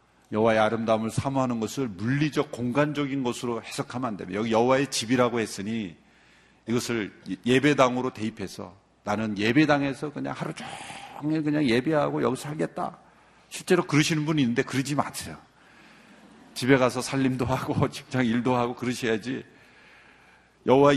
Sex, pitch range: male, 120-140 Hz